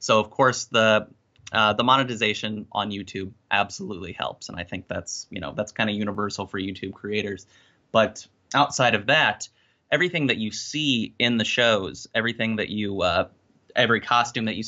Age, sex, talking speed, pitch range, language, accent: 20-39, male, 175 wpm, 100-115 Hz, English, American